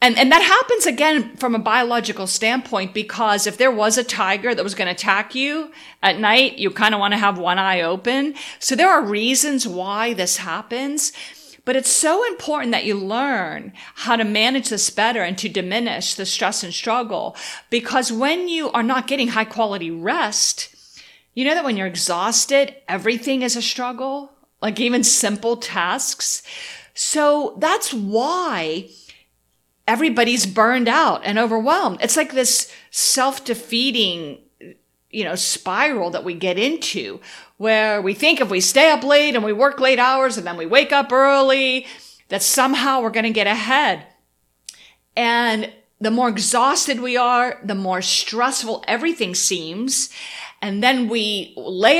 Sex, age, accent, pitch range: female, 50-69, American, 205-270 Hz